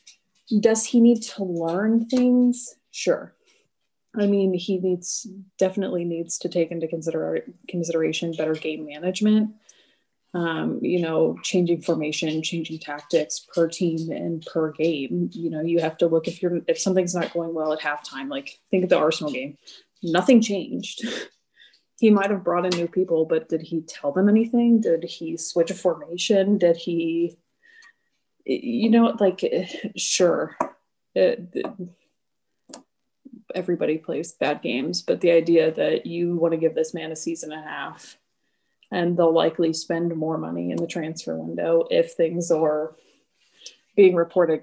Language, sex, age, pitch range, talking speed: English, female, 20-39, 160-195 Hz, 150 wpm